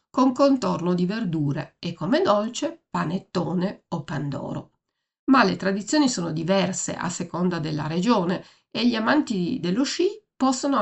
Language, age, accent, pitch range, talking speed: Italian, 50-69, native, 170-250 Hz, 140 wpm